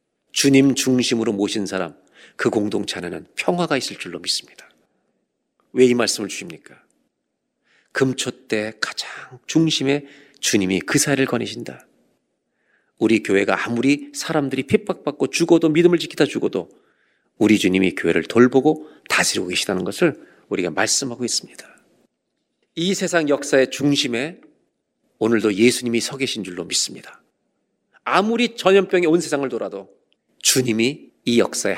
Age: 40-59